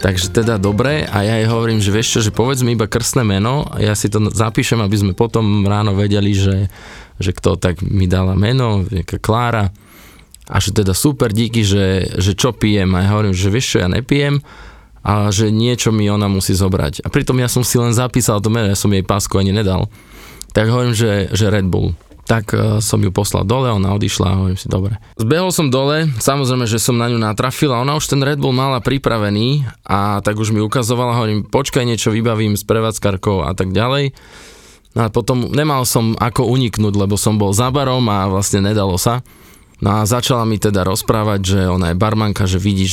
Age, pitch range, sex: 20-39, 100-120 Hz, male